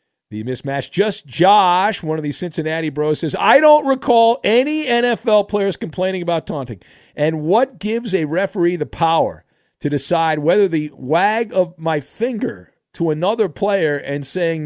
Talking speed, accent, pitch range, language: 160 wpm, American, 140-190 Hz, English